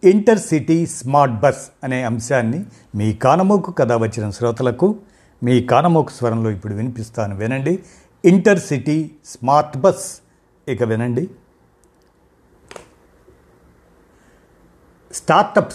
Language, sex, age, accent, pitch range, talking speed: Telugu, male, 50-69, native, 120-165 Hz, 90 wpm